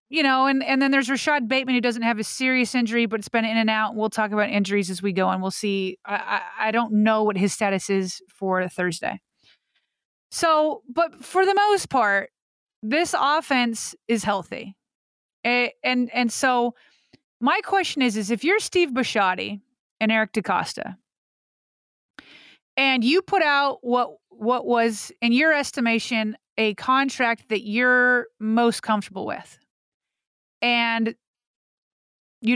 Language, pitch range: English, 215-275 Hz